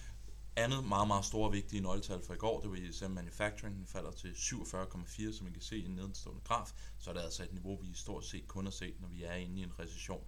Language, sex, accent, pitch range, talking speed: Danish, male, native, 90-100 Hz, 255 wpm